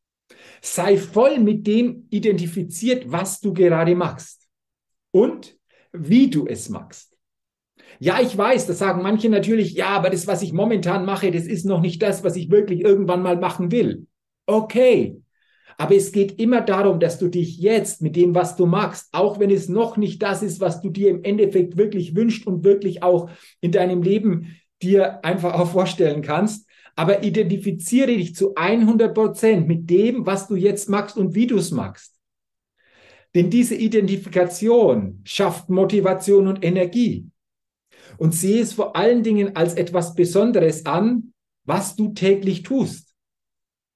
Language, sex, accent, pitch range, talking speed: German, male, German, 180-210 Hz, 160 wpm